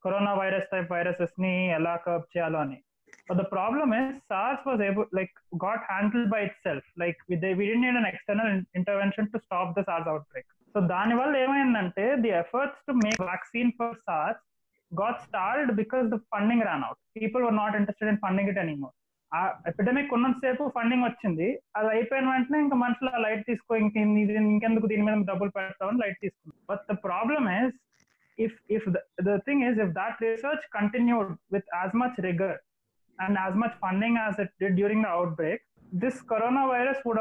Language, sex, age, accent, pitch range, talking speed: Telugu, male, 20-39, native, 190-235 Hz, 150 wpm